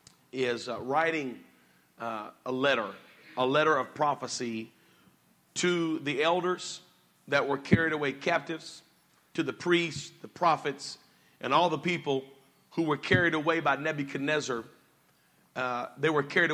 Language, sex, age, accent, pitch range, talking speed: English, male, 40-59, American, 130-170 Hz, 135 wpm